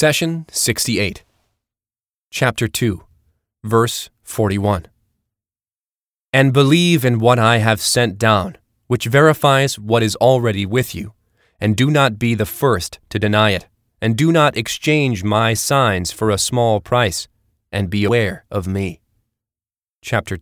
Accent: American